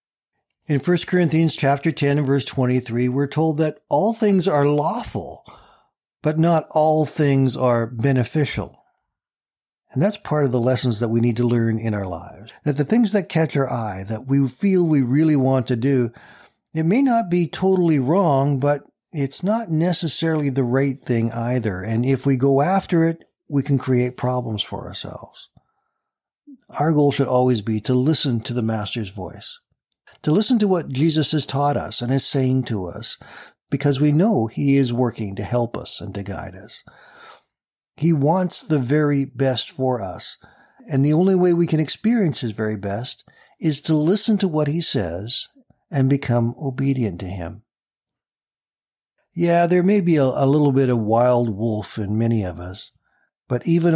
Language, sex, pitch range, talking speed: English, male, 115-155 Hz, 175 wpm